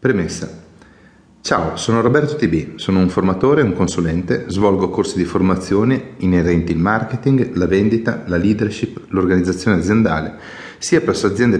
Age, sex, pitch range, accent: 40-59, male, 85-110 Hz, native